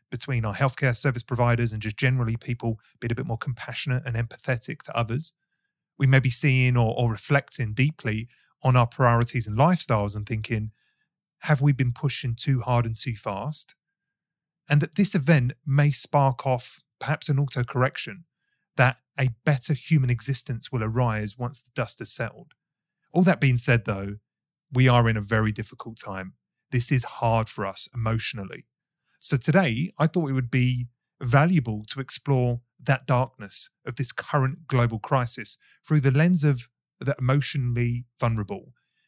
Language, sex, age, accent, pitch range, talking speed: English, male, 30-49, British, 120-150 Hz, 165 wpm